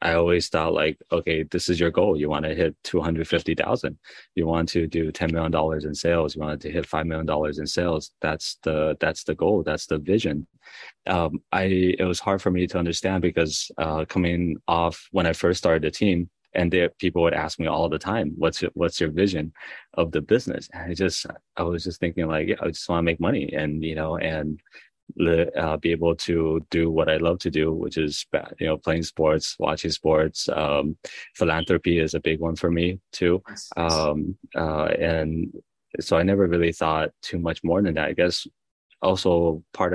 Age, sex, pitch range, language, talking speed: 30-49, male, 80-85 Hz, English, 210 wpm